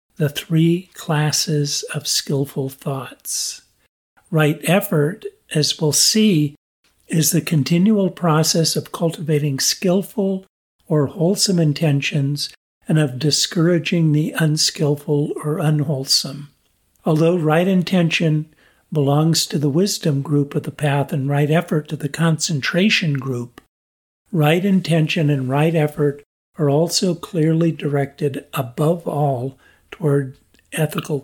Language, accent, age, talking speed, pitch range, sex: English, American, 50-69, 115 wpm, 140-165 Hz, male